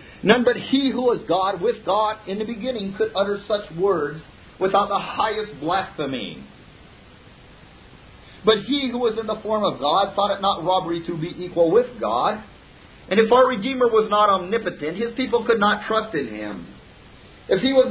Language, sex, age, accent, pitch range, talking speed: English, male, 50-69, American, 165-215 Hz, 180 wpm